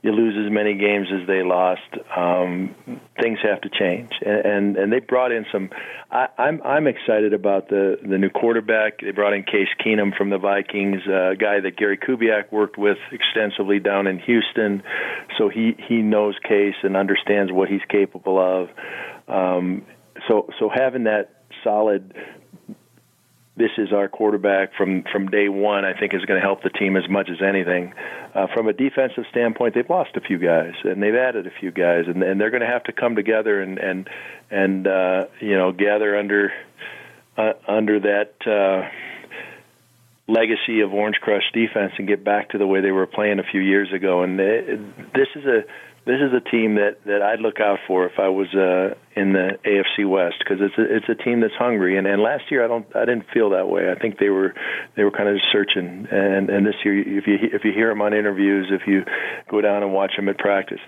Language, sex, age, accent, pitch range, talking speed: English, male, 40-59, American, 95-105 Hz, 210 wpm